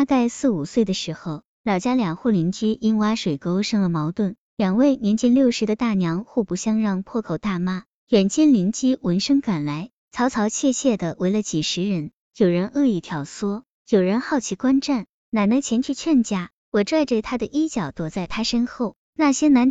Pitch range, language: 185-255 Hz, Chinese